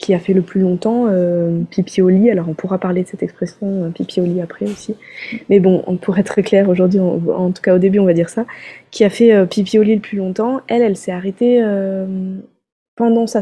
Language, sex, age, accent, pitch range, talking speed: French, female, 20-39, French, 185-220 Hz, 250 wpm